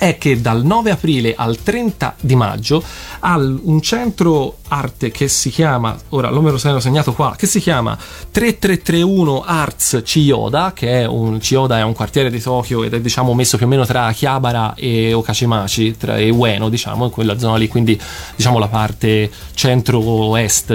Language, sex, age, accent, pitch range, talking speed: Italian, male, 30-49, native, 115-145 Hz, 170 wpm